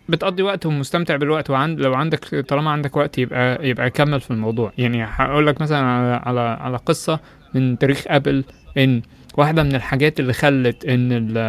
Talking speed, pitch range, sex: 170 wpm, 120-150 Hz, male